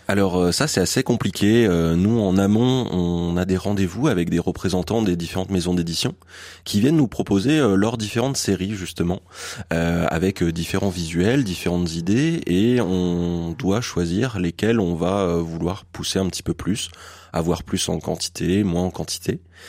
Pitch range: 85-105 Hz